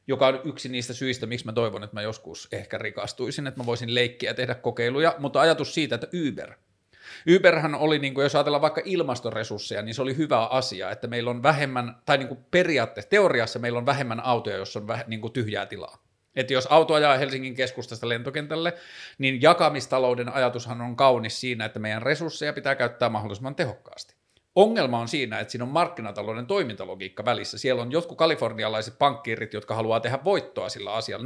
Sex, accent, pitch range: male, native, 115-140 Hz